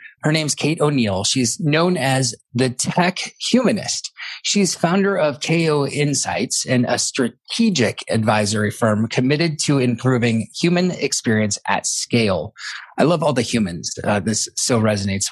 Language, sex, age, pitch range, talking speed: English, male, 30-49, 105-135 Hz, 140 wpm